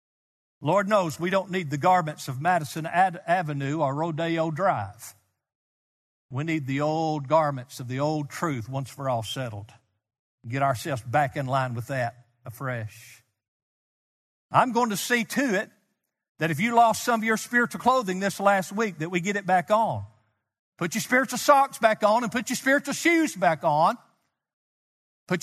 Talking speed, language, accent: 170 wpm, English, American